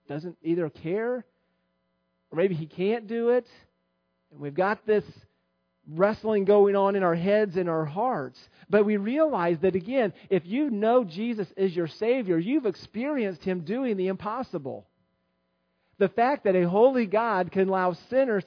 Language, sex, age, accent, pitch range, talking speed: English, male, 40-59, American, 150-205 Hz, 160 wpm